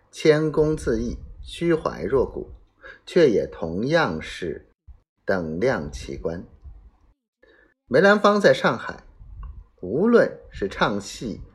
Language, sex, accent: Chinese, male, native